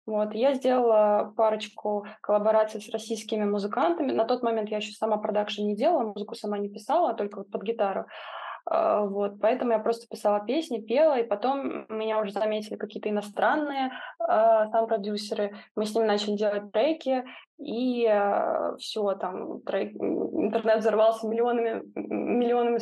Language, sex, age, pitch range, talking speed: Russian, female, 20-39, 210-235 Hz, 145 wpm